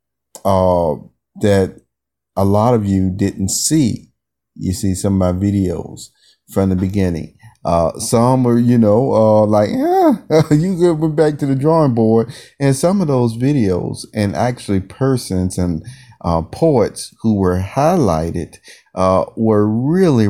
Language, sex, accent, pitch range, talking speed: English, male, American, 95-115 Hz, 145 wpm